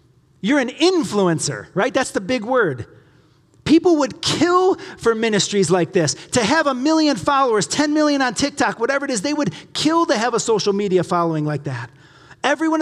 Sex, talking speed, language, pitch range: male, 185 wpm, English, 160-230 Hz